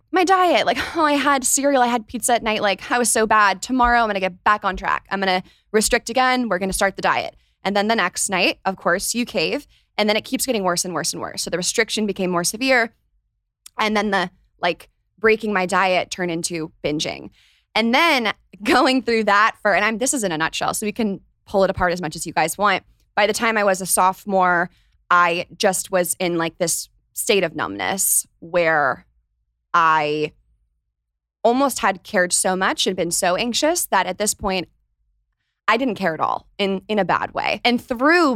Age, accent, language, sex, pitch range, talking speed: 20-39, American, English, female, 175-220 Hz, 215 wpm